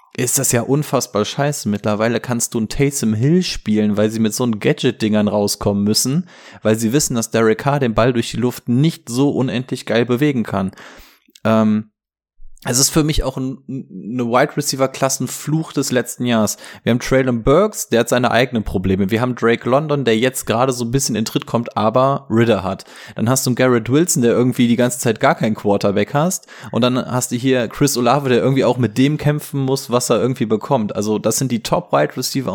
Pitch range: 110-135 Hz